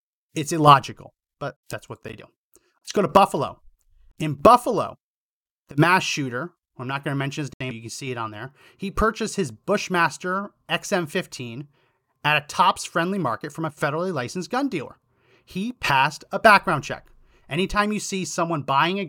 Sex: male